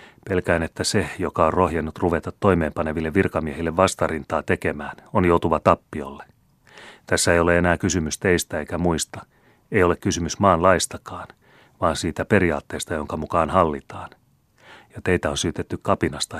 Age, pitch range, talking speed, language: 30-49, 80-95 Hz, 135 wpm, Finnish